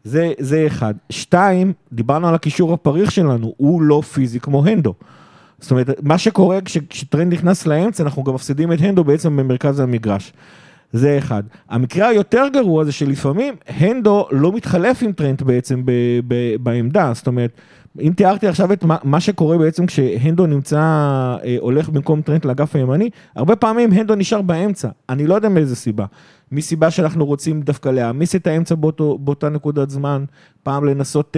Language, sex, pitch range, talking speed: Hebrew, male, 135-165 Hz, 165 wpm